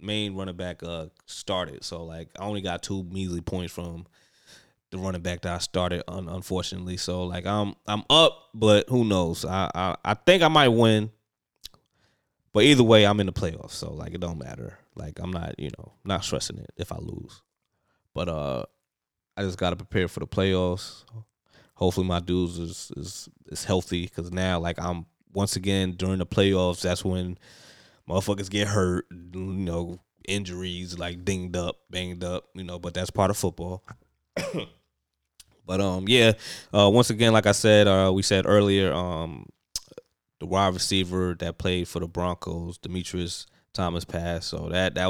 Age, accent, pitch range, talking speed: 20-39, American, 85-100 Hz, 175 wpm